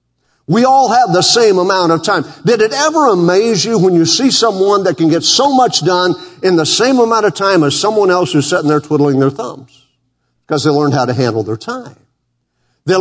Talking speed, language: 215 wpm, English